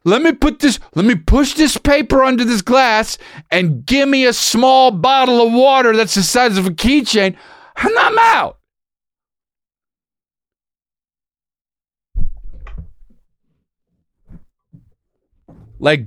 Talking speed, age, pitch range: 110 wpm, 40-59, 155-225 Hz